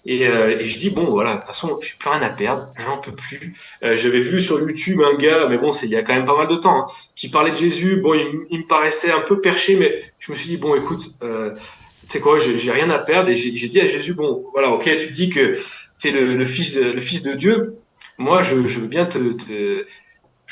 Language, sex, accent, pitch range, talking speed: French, male, French, 130-190 Hz, 270 wpm